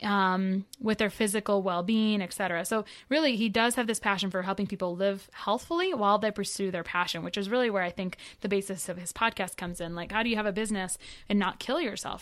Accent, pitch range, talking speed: American, 190-230 Hz, 240 wpm